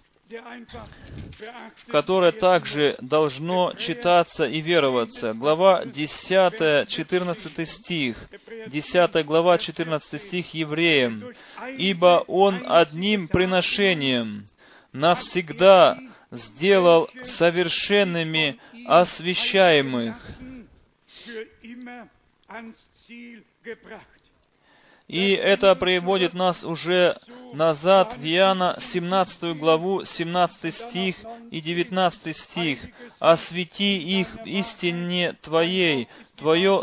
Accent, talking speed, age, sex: native, 70 wpm, 30-49, male